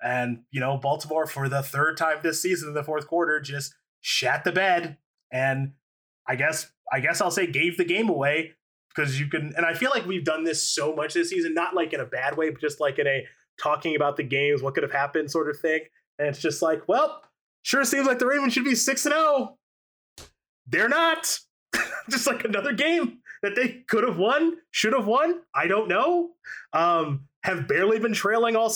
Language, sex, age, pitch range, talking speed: English, male, 20-39, 150-200 Hz, 215 wpm